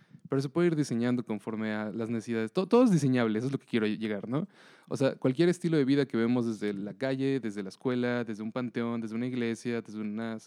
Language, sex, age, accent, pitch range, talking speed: Spanish, male, 20-39, Mexican, 115-155 Hz, 240 wpm